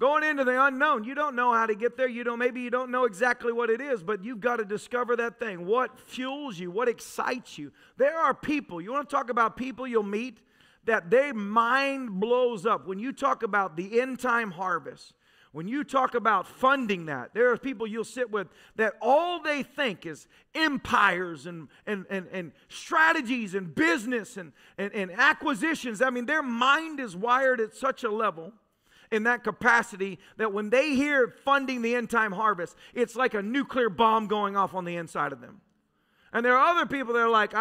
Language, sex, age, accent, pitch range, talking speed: English, male, 40-59, American, 215-280 Hz, 205 wpm